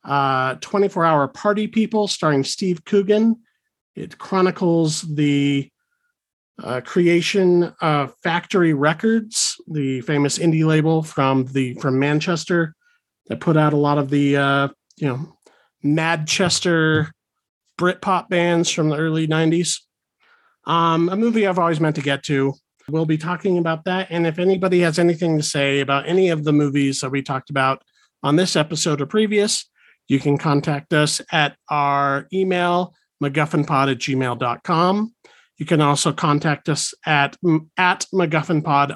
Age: 40-59